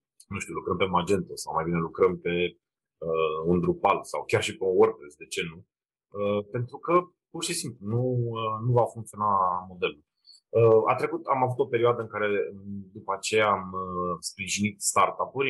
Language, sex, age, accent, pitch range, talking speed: Romanian, male, 30-49, native, 95-125 Hz, 190 wpm